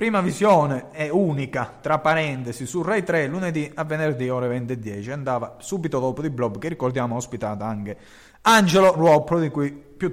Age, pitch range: 30-49, 125-180 Hz